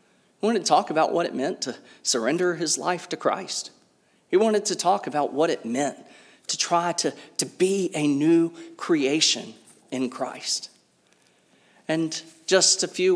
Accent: American